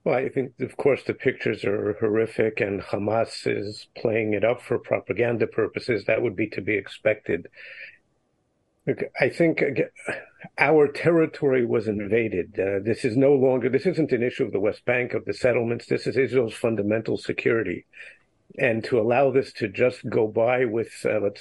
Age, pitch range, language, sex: 50-69, 115-135 Hz, English, male